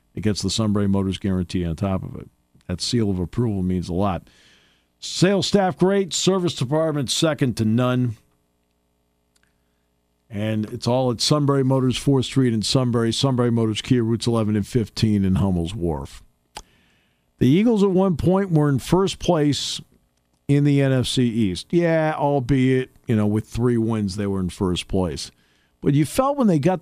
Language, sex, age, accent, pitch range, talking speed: English, male, 50-69, American, 90-135 Hz, 170 wpm